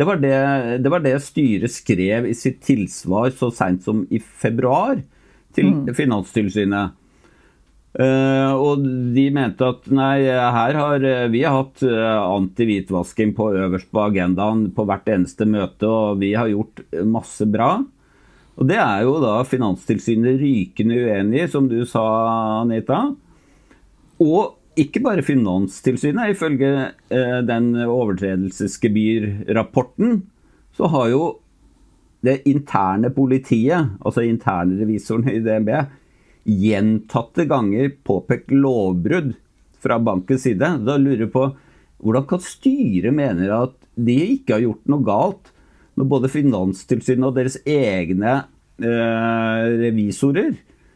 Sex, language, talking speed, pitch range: male, English, 120 wpm, 105-135 Hz